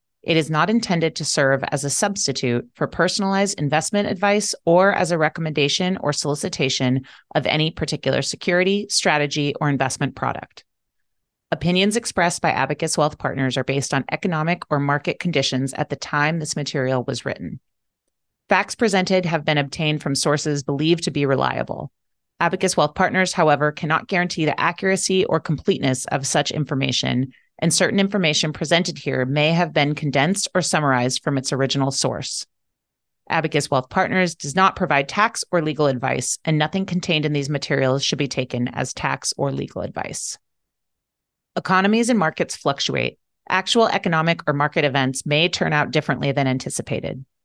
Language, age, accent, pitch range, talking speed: English, 30-49, American, 140-180 Hz, 160 wpm